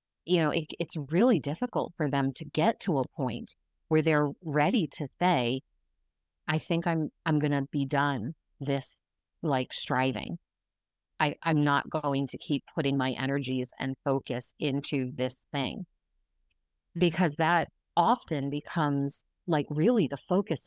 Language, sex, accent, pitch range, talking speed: English, female, American, 140-180 Hz, 150 wpm